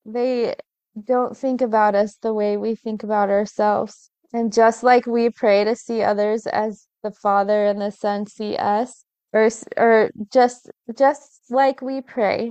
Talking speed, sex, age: 165 wpm, female, 20-39